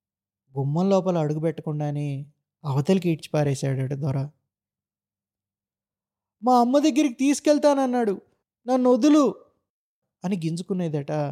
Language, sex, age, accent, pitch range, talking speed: Telugu, male, 20-39, native, 145-195 Hz, 80 wpm